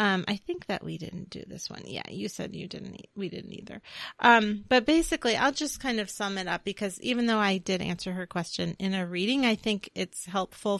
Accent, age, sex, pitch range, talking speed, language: American, 30-49, female, 175-210 Hz, 235 wpm, English